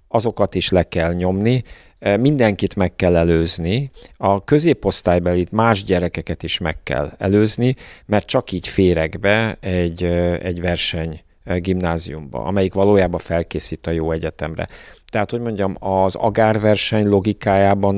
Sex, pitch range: male, 85-105 Hz